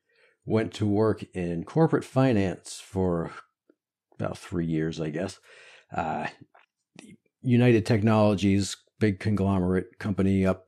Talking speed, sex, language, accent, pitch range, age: 105 wpm, male, English, American, 95-130 Hz, 40-59